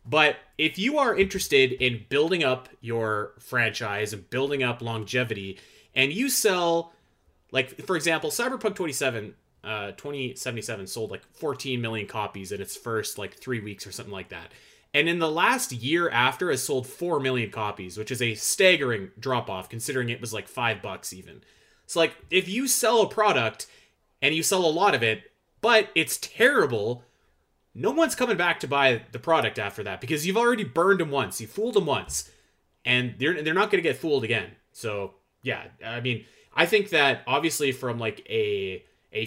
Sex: male